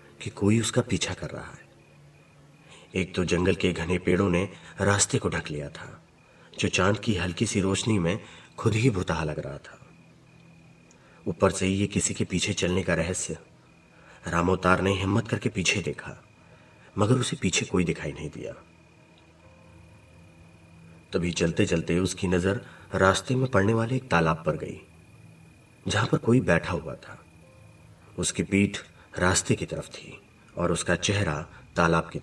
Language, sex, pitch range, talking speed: Hindi, male, 85-135 Hz, 160 wpm